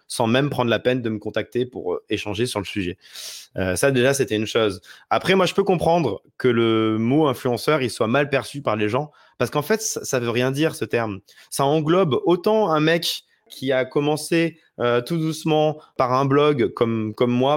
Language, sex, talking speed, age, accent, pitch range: English, male, 210 wpm, 20-39, French, 120-155 Hz